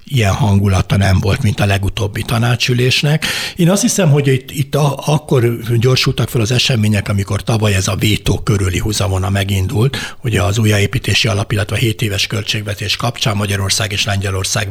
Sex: male